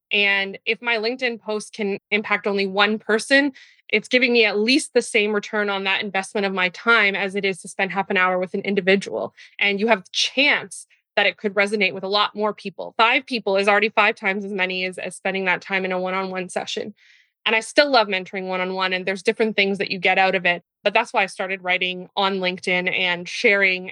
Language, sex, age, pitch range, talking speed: English, female, 20-39, 190-225 Hz, 230 wpm